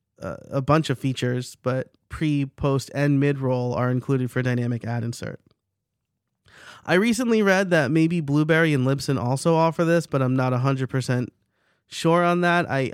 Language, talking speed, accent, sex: English, 170 wpm, American, male